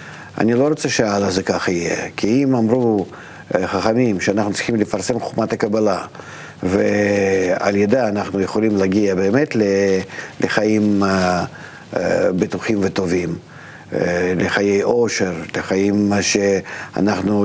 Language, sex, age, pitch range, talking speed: Hebrew, male, 50-69, 100-115 Hz, 100 wpm